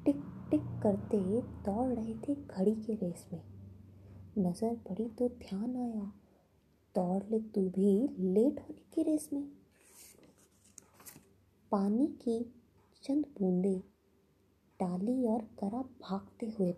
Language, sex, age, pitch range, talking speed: Hindi, female, 20-39, 185-245 Hz, 120 wpm